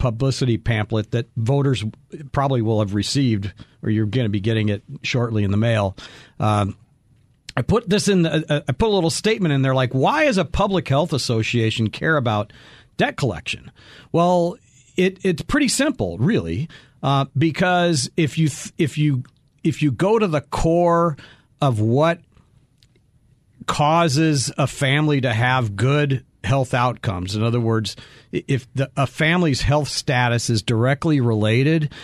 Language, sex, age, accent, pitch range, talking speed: English, male, 50-69, American, 115-145 Hz, 150 wpm